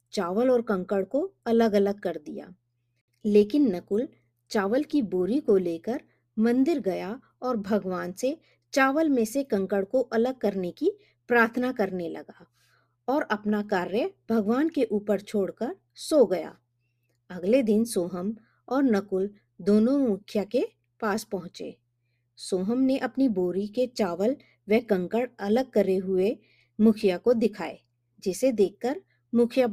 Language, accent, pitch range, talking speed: Hindi, native, 190-255 Hz, 135 wpm